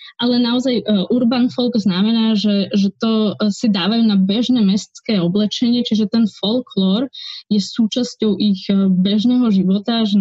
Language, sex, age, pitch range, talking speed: Slovak, female, 20-39, 195-225 Hz, 135 wpm